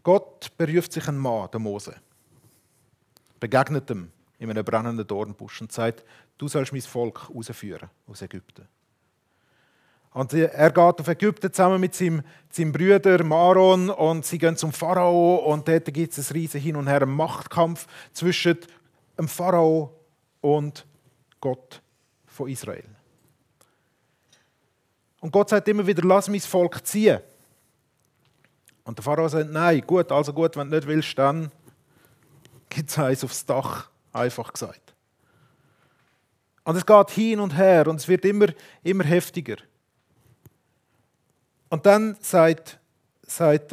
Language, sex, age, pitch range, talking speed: German, male, 40-59, 130-170 Hz, 135 wpm